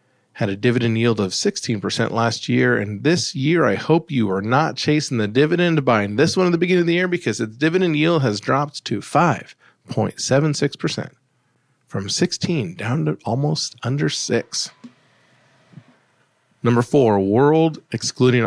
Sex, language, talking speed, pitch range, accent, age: male, English, 155 wpm, 115-155 Hz, American, 40-59